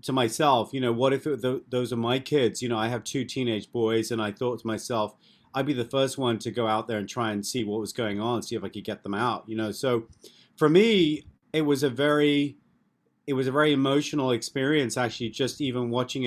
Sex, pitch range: male, 115-135 Hz